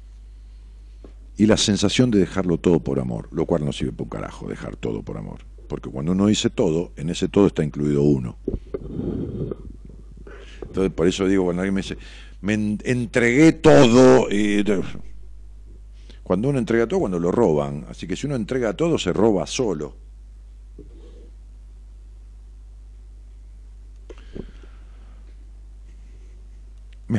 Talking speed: 130 wpm